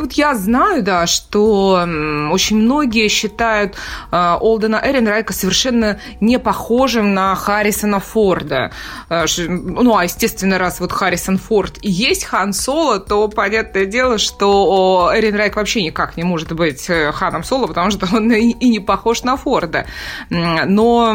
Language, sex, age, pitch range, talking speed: Russian, female, 20-39, 180-225 Hz, 140 wpm